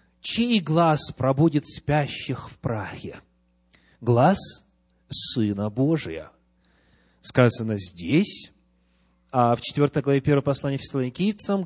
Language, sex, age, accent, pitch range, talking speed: Russian, male, 30-49, native, 120-165 Hz, 95 wpm